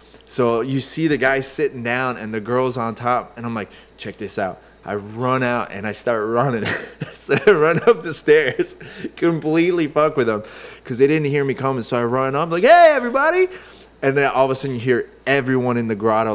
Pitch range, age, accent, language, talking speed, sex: 110-140 Hz, 20-39, American, English, 220 wpm, male